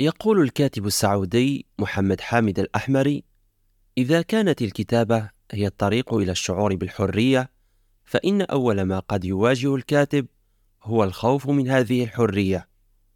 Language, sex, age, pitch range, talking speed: Arabic, male, 30-49, 100-130 Hz, 115 wpm